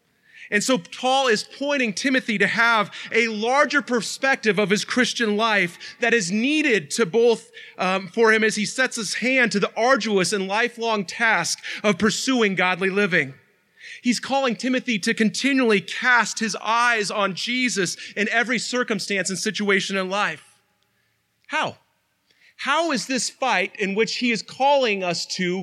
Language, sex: English, male